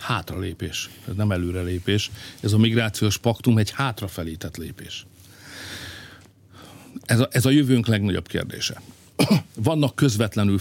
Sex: male